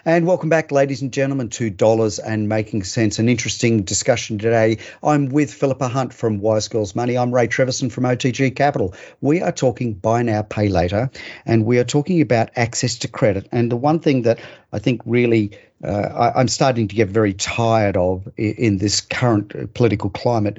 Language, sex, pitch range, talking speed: English, male, 110-140 Hz, 190 wpm